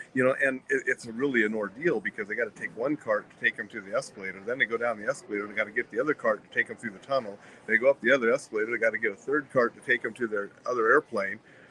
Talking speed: 305 wpm